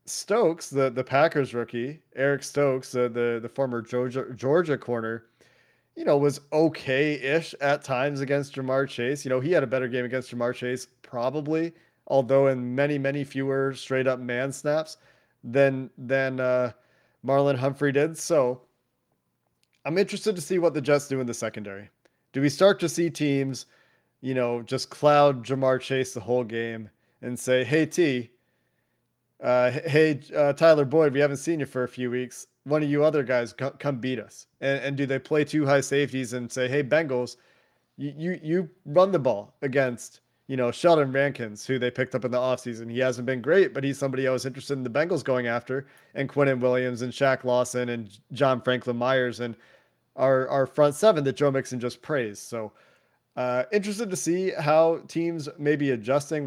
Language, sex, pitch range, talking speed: English, male, 125-145 Hz, 190 wpm